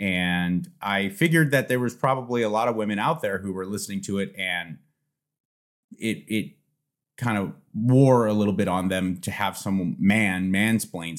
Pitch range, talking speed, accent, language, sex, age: 100-140 Hz, 180 wpm, American, English, male, 30-49